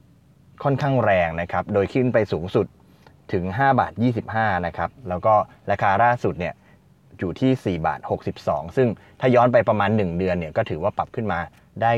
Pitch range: 95-125 Hz